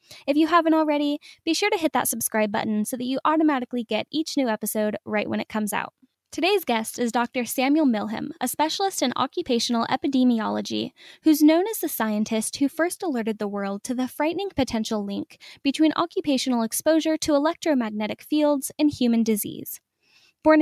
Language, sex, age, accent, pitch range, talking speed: English, female, 10-29, American, 225-300 Hz, 175 wpm